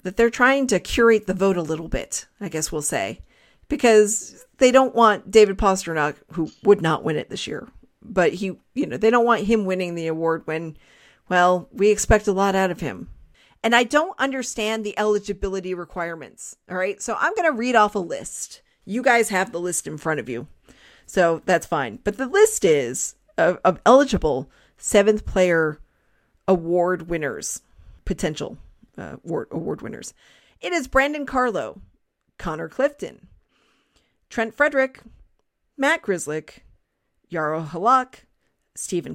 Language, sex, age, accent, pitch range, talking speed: English, female, 40-59, American, 175-245 Hz, 160 wpm